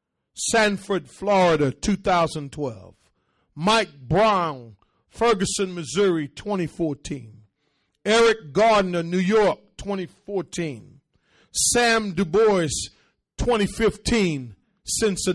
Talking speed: 65 wpm